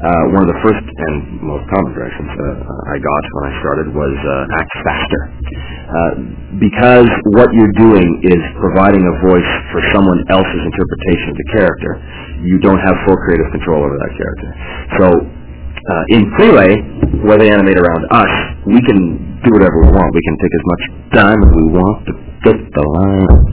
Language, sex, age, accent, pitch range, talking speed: English, male, 40-59, American, 75-100 Hz, 185 wpm